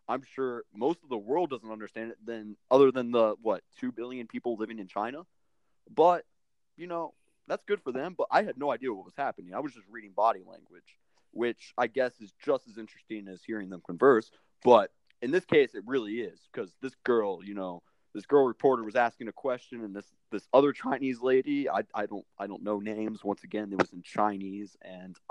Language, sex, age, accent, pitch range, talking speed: English, male, 20-39, American, 105-145 Hz, 215 wpm